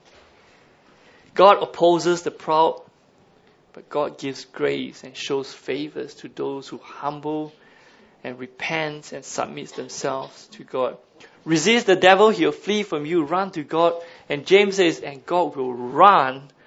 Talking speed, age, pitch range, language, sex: 145 wpm, 20-39, 145-180 Hz, English, male